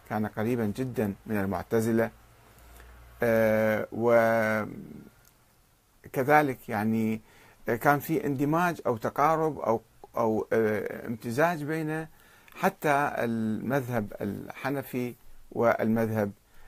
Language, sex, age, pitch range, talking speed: Arabic, male, 50-69, 105-140 Hz, 70 wpm